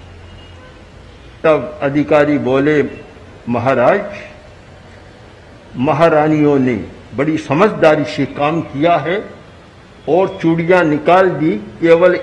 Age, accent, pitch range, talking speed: 60-79, native, 145-185 Hz, 85 wpm